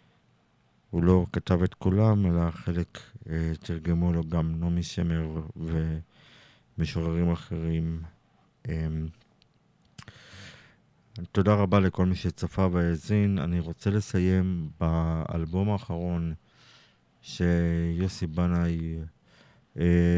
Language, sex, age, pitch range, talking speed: Hebrew, male, 50-69, 85-95 Hz, 90 wpm